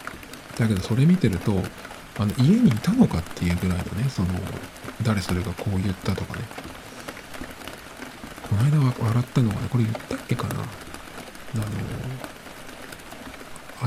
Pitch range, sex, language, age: 95-125 Hz, male, Japanese, 50-69